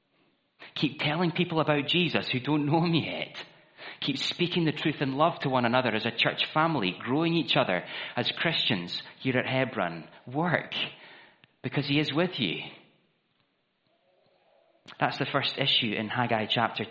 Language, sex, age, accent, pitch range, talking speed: English, male, 30-49, British, 110-150 Hz, 155 wpm